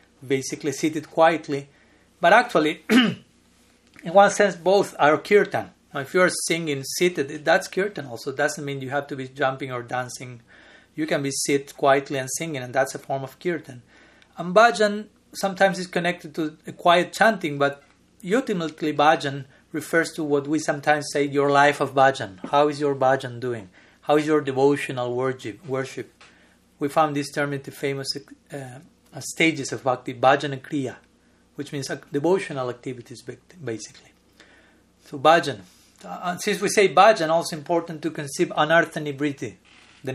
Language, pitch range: English, 135-170 Hz